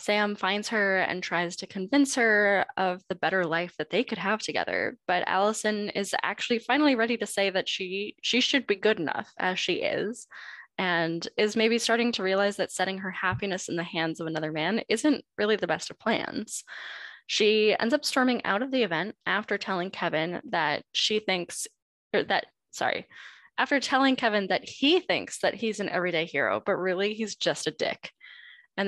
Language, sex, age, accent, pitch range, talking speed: English, female, 10-29, American, 180-230 Hz, 190 wpm